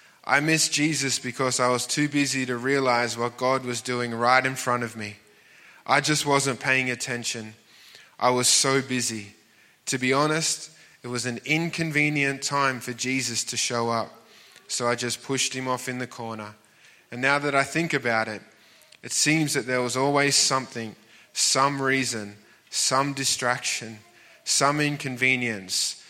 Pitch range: 120-140 Hz